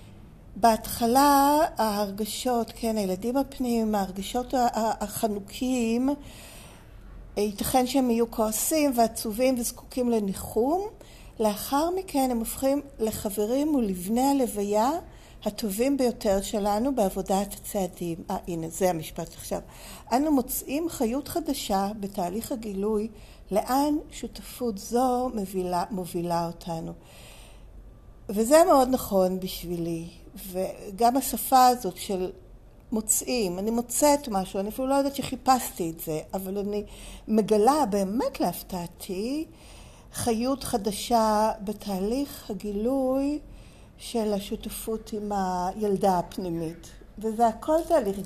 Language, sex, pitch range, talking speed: Hebrew, female, 190-250 Hz, 95 wpm